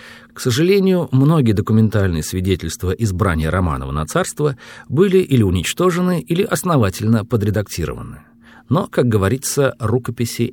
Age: 50-69